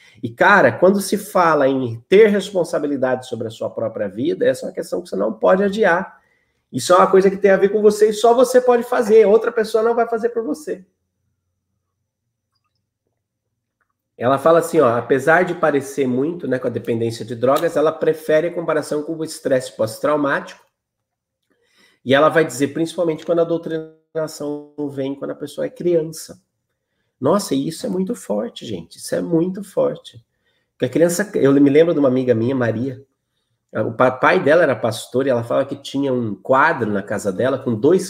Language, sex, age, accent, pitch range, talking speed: Portuguese, male, 30-49, Brazilian, 130-190 Hz, 185 wpm